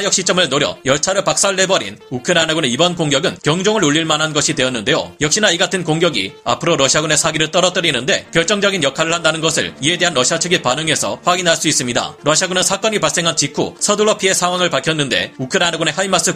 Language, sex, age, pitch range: Korean, male, 30-49, 150-185 Hz